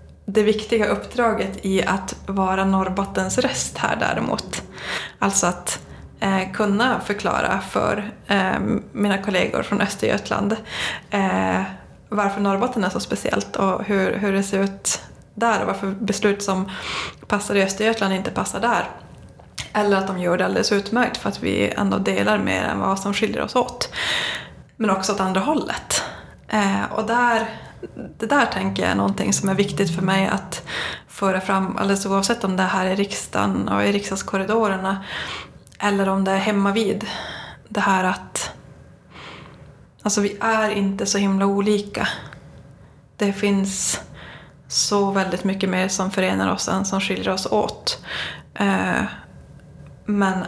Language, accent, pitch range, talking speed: Swedish, native, 190-210 Hz, 145 wpm